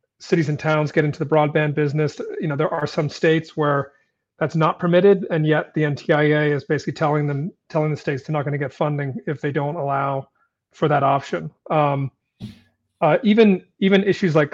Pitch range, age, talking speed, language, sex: 145-165 Hz, 40-59, 200 wpm, English, male